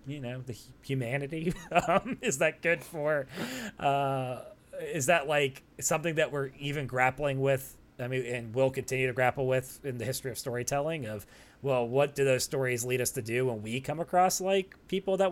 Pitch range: 115-160 Hz